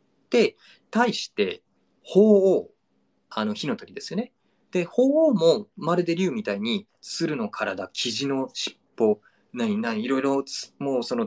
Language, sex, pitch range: Japanese, male, 140-215 Hz